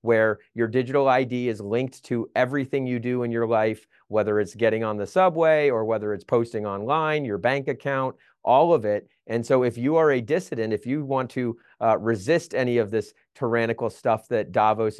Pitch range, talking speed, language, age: 110-130 Hz, 200 wpm, English, 30-49